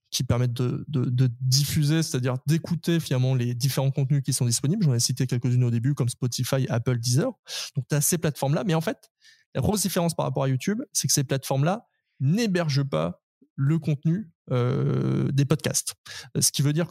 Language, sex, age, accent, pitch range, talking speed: French, male, 20-39, French, 130-165 Hz, 195 wpm